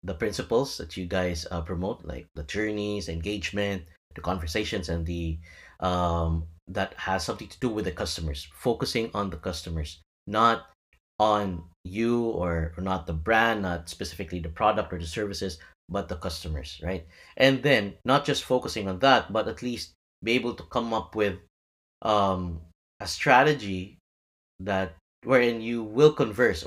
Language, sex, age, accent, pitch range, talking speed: English, male, 30-49, Filipino, 85-115 Hz, 160 wpm